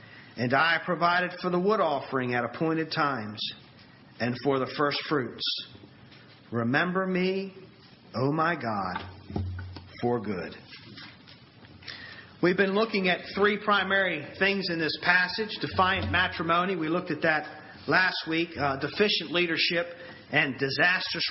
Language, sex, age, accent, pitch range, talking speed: English, male, 40-59, American, 140-185 Hz, 130 wpm